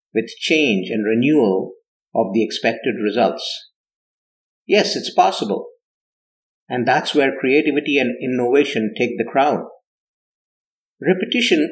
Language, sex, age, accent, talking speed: English, male, 50-69, Indian, 110 wpm